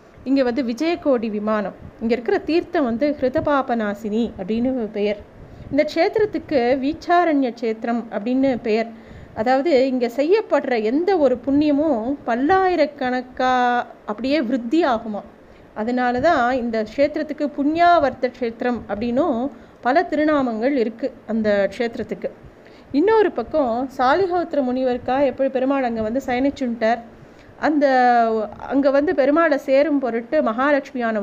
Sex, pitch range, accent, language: female, 230-290 Hz, native, Tamil